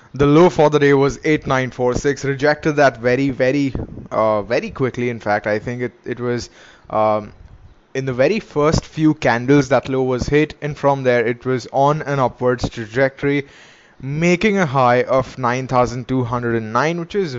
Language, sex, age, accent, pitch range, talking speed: English, male, 20-39, Indian, 120-140 Hz, 165 wpm